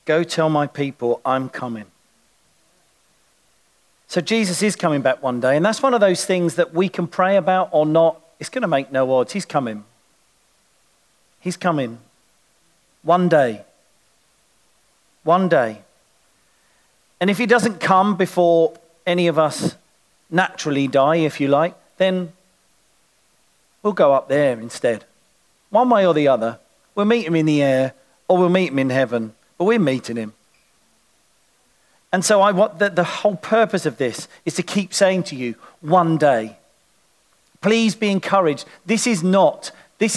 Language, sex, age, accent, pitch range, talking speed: English, male, 40-59, British, 145-205 Hz, 160 wpm